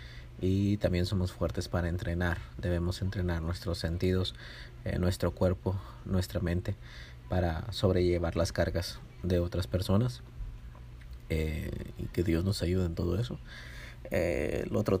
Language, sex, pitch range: Spanish, male, 85-100 Hz